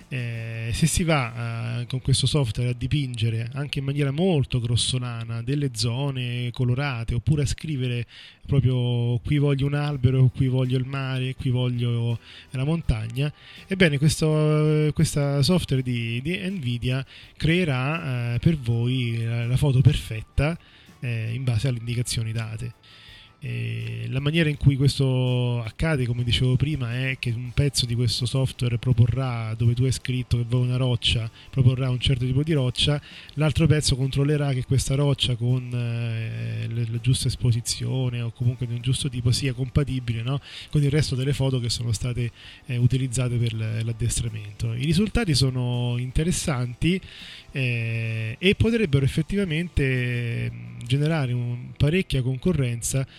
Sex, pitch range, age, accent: male, 120-140 Hz, 20-39, native